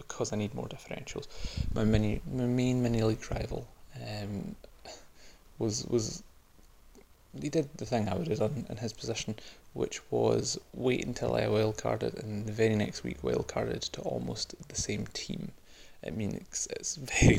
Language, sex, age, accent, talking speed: English, male, 20-39, British, 175 wpm